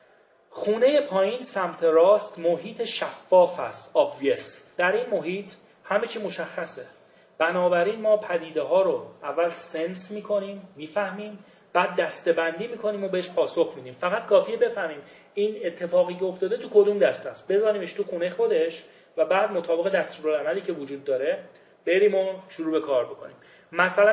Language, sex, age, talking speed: English, male, 30-49, 155 wpm